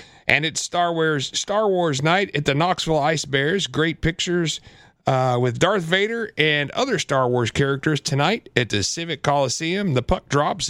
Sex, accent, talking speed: male, American, 175 wpm